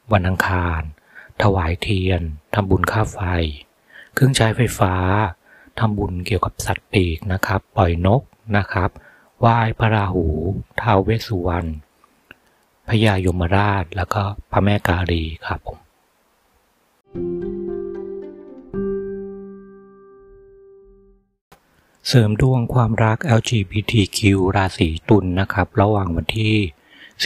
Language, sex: Thai, male